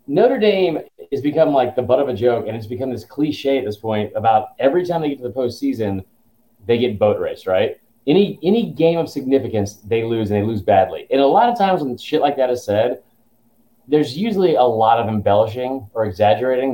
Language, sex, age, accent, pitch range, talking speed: English, male, 30-49, American, 110-150 Hz, 220 wpm